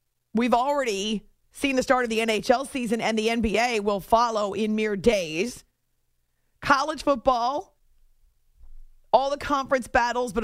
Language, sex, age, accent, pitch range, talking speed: English, female, 40-59, American, 190-250 Hz, 140 wpm